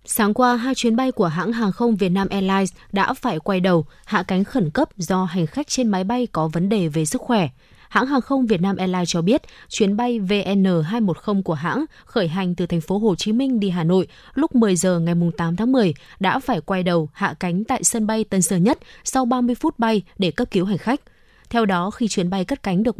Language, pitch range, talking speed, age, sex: Vietnamese, 180-240 Hz, 240 wpm, 20-39, female